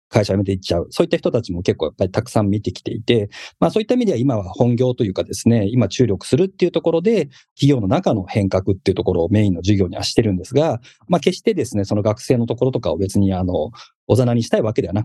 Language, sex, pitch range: Japanese, male, 100-145 Hz